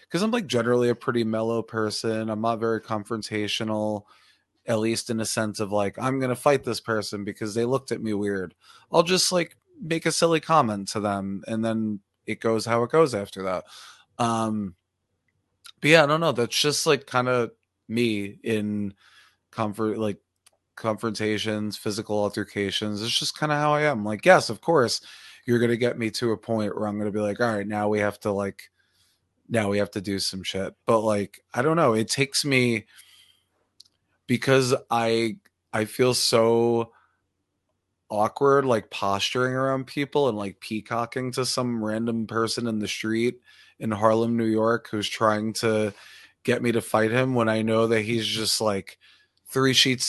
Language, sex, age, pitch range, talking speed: English, male, 20-39, 105-120 Hz, 180 wpm